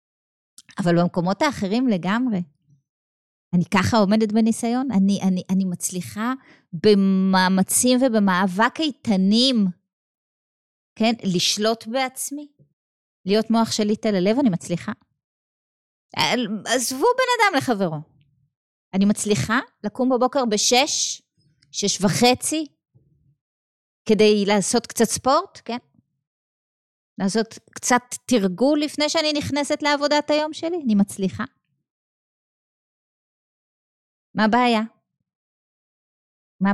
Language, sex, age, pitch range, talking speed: Hebrew, female, 20-39, 190-260 Hz, 90 wpm